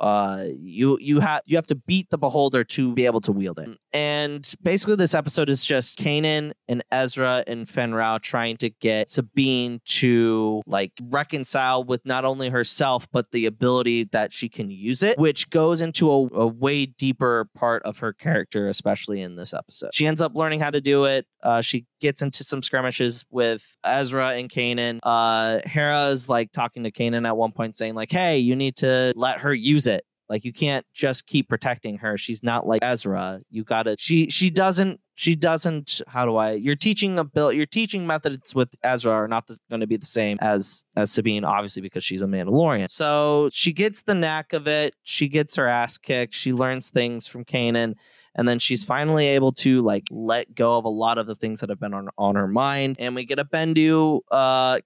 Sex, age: male, 20-39